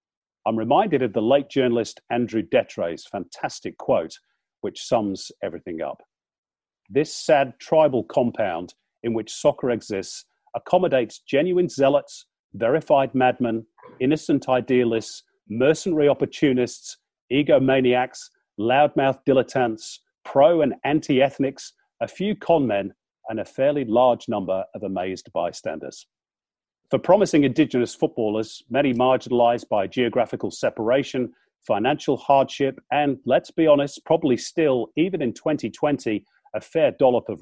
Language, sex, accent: English, male, British